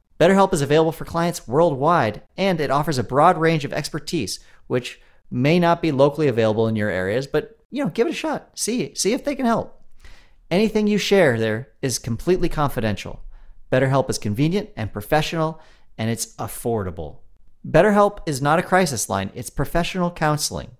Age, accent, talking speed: 40-59, American, 175 wpm